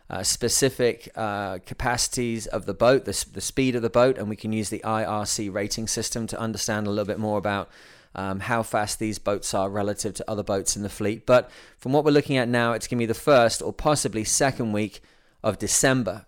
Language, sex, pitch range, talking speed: English, male, 105-130 Hz, 220 wpm